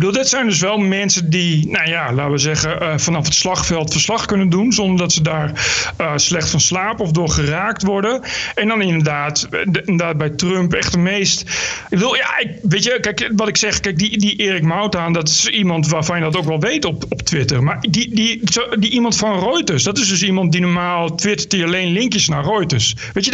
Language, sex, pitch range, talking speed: Dutch, male, 160-215 Hz, 230 wpm